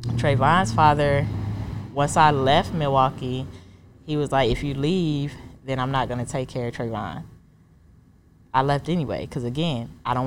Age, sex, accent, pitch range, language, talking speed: 20-39, female, American, 110-150 Hz, English, 160 wpm